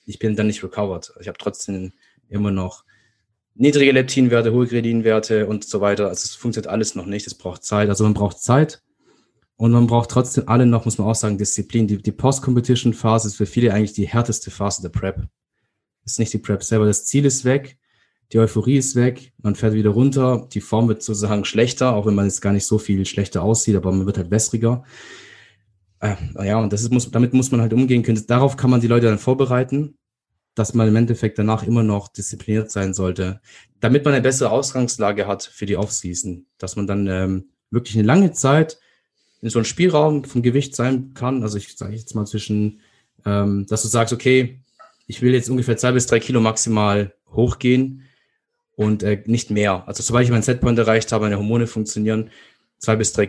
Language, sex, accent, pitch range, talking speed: German, male, German, 105-125 Hz, 205 wpm